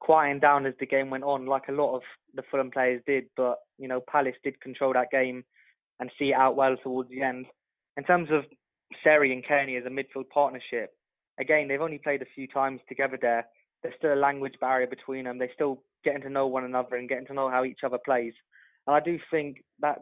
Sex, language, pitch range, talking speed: male, English, 125-140 Hz, 230 wpm